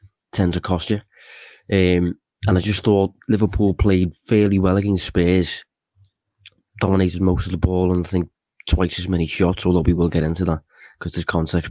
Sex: male